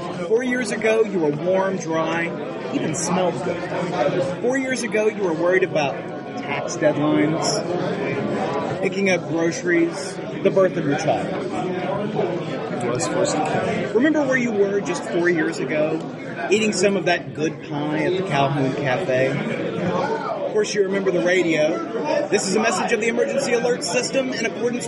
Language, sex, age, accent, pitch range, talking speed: English, male, 30-49, American, 175-235 Hz, 150 wpm